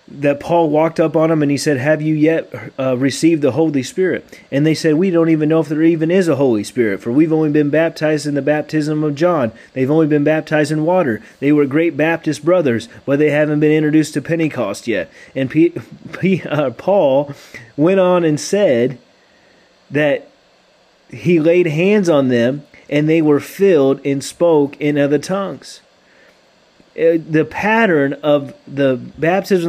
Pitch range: 140-170 Hz